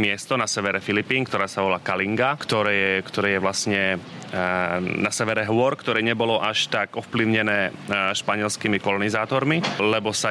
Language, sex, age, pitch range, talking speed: Slovak, male, 30-49, 95-110 Hz, 145 wpm